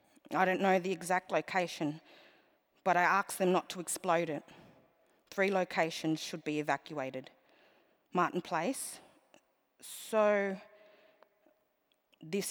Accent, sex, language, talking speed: Australian, female, English, 110 wpm